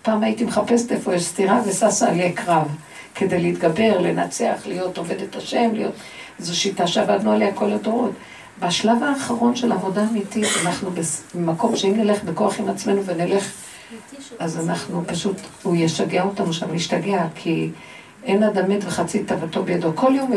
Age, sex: 50-69, female